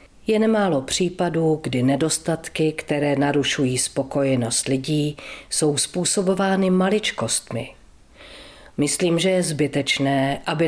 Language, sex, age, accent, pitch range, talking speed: Czech, female, 40-59, native, 140-190 Hz, 95 wpm